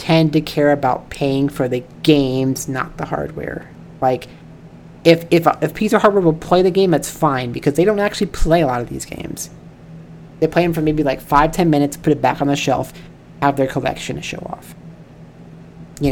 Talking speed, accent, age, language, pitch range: 210 wpm, American, 30-49, English, 140-170 Hz